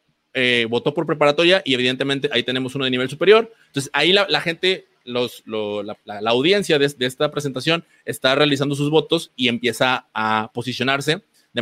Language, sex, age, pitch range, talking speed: Spanish, male, 30-49, 120-155 Hz, 185 wpm